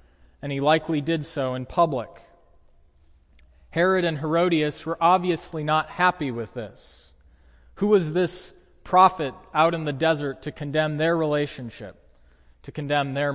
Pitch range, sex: 130-170 Hz, male